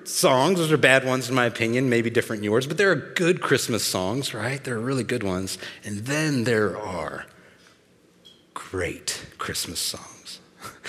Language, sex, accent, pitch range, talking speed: English, male, American, 115-150 Hz, 170 wpm